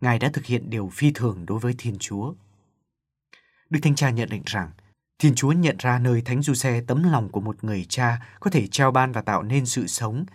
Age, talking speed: 20-39, 225 wpm